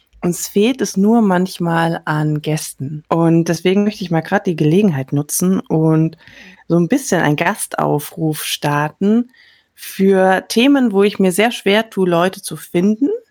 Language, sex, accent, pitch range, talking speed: German, female, German, 170-215 Hz, 155 wpm